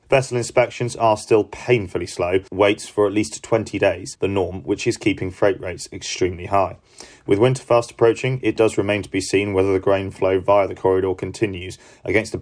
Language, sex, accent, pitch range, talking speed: English, male, British, 95-115 Hz, 200 wpm